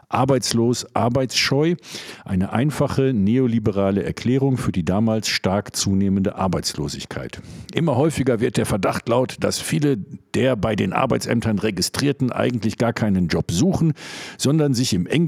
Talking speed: 130 wpm